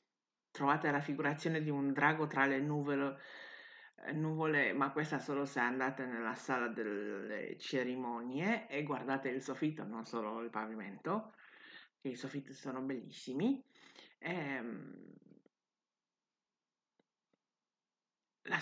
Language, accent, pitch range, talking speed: Italian, native, 140-190 Hz, 105 wpm